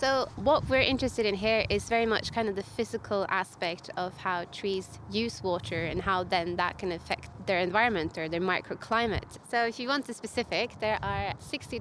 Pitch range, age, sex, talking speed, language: 185-225 Hz, 20-39, female, 200 wpm, English